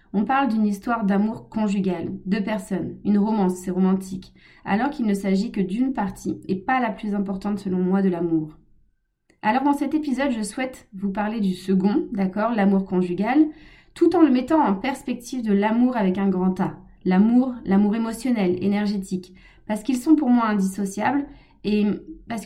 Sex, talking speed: female, 175 wpm